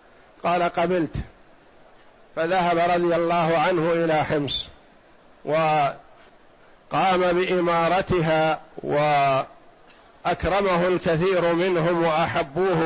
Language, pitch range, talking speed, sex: Arabic, 165-185 Hz, 65 wpm, male